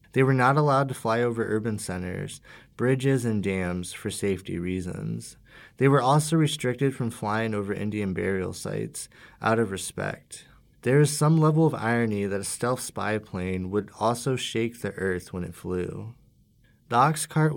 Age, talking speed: 20-39, 170 wpm